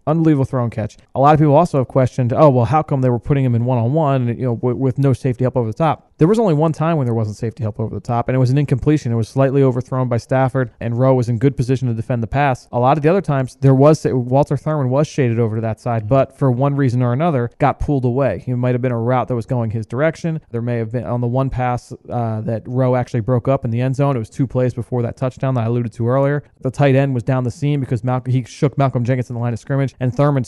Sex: male